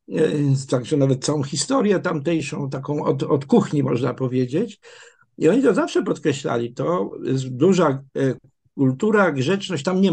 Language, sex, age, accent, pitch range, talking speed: Polish, male, 50-69, native, 130-165 Hz, 135 wpm